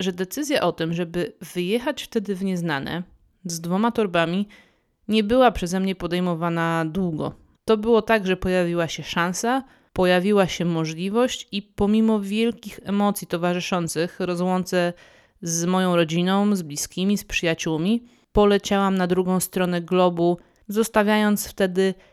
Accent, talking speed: native, 130 wpm